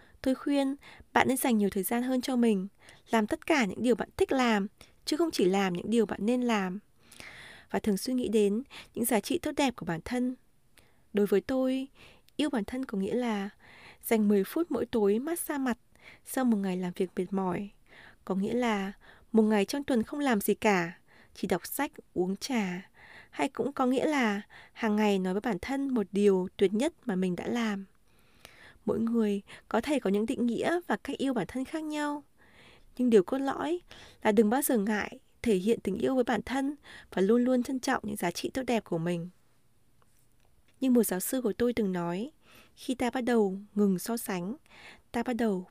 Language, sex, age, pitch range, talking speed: Vietnamese, female, 20-39, 200-255 Hz, 210 wpm